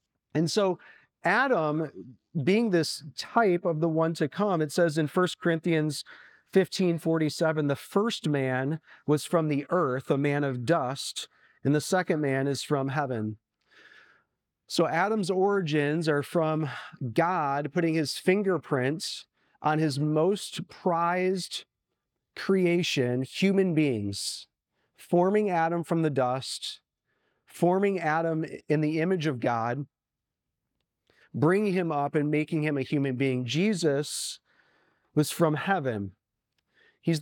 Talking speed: 125 wpm